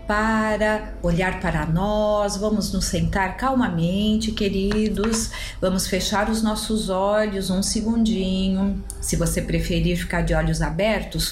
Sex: female